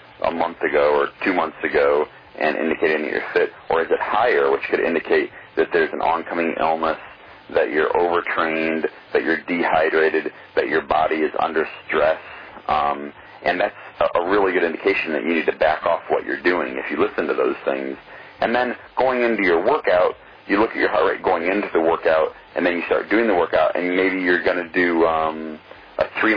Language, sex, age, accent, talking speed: English, male, 40-59, American, 205 wpm